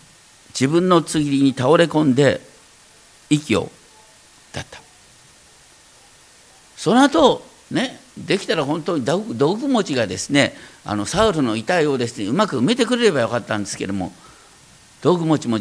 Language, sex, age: Japanese, male, 50-69